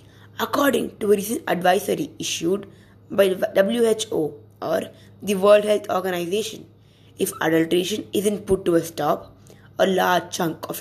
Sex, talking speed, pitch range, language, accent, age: female, 140 wpm, 145-205 Hz, English, Indian, 20-39